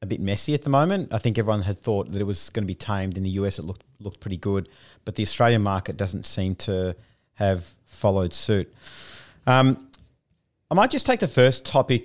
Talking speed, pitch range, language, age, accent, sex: 220 wpm, 100-125 Hz, English, 30-49, Australian, male